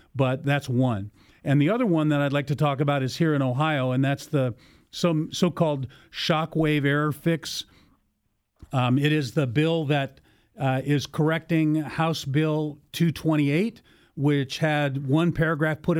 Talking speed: 160 wpm